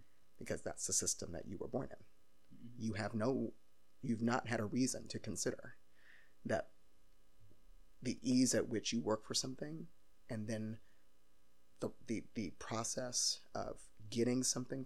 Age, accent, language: 30-49, American, English